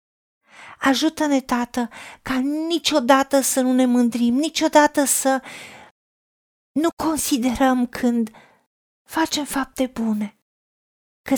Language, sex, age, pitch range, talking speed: Romanian, female, 40-59, 230-285 Hz, 90 wpm